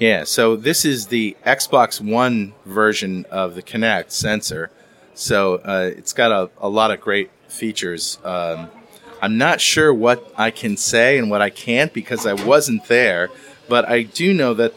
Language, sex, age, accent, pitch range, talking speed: English, male, 30-49, American, 100-125 Hz, 175 wpm